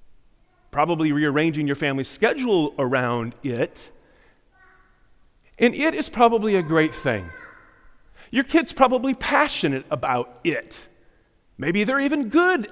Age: 40-59